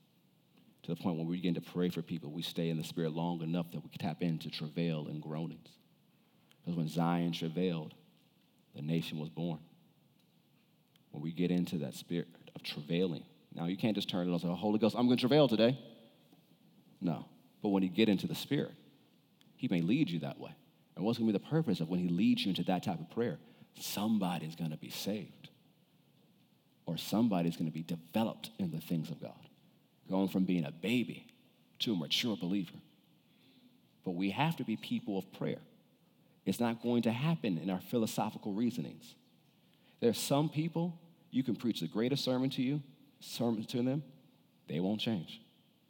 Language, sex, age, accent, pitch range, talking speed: English, male, 40-59, American, 85-115 Hz, 195 wpm